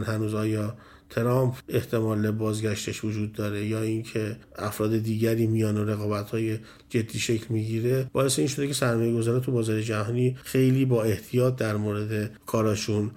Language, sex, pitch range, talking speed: Persian, male, 110-130 Hz, 140 wpm